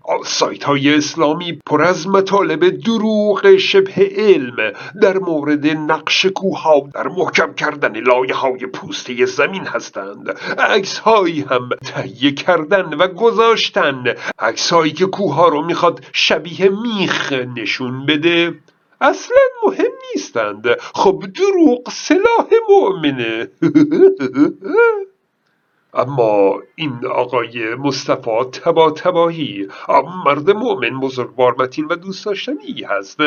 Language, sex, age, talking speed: Persian, male, 50-69, 105 wpm